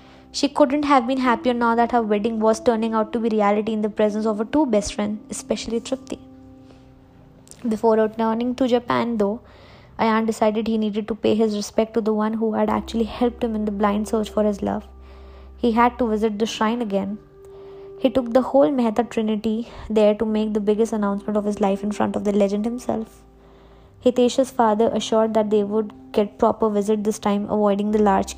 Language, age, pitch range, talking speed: English, 20-39, 205-235 Hz, 200 wpm